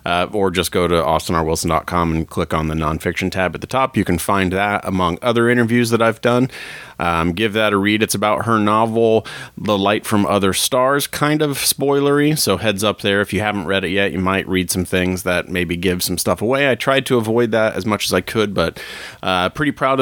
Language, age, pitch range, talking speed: English, 30-49, 90-120 Hz, 230 wpm